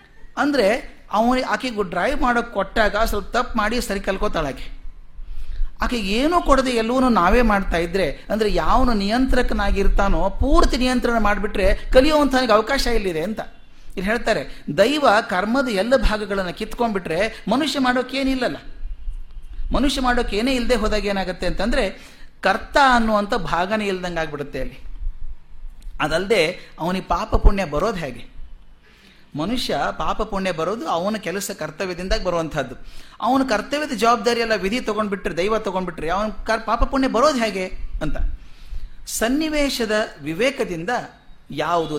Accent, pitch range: native, 165-235 Hz